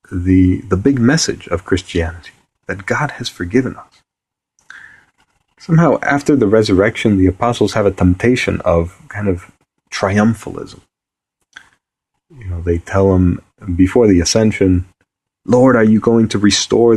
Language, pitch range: English, 95-120 Hz